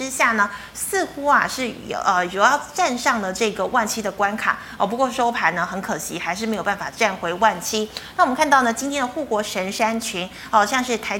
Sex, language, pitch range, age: female, Chinese, 200-260 Hz, 30-49